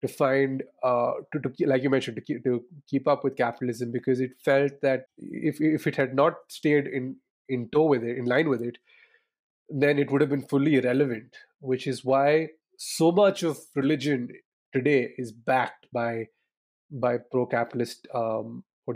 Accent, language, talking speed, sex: Indian, English, 180 wpm, male